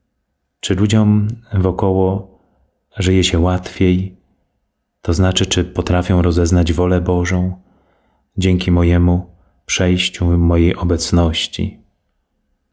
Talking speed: 85 wpm